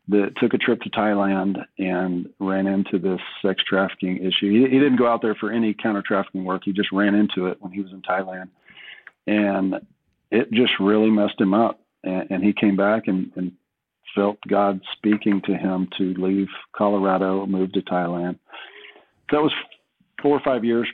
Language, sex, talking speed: English, male, 185 wpm